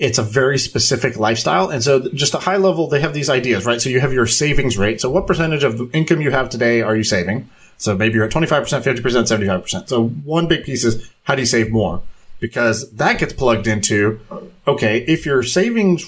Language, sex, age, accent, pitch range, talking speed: English, male, 30-49, American, 110-145 Hz, 225 wpm